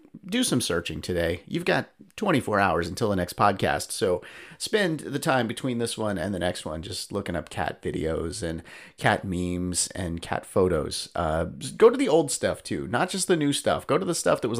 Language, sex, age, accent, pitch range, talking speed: English, male, 30-49, American, 95-130 Hz, 215 wpm